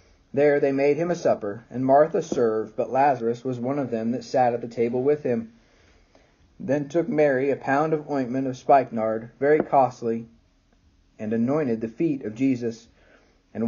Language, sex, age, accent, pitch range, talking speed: English, male, 40-59, American, 120-150 Hz, 175 wpm